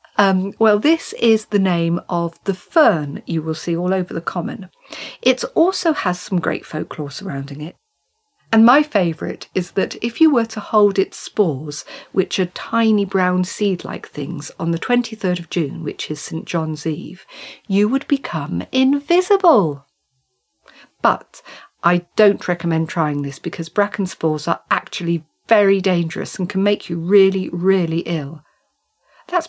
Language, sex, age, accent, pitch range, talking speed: English, female, 50-69, British, 165-215 Hz, 155 wpm